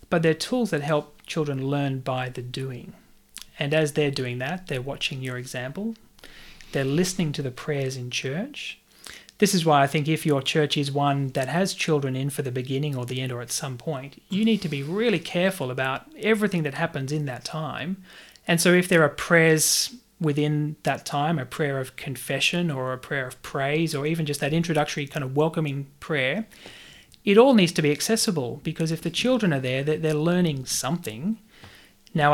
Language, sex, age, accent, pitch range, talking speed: English, male, 30-49, Australian, 135-165 Hz, 195 wpm